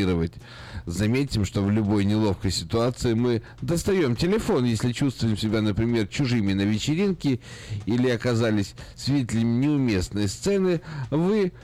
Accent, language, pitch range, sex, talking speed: native, Russian, 105-130 Hz, male, 115 wpm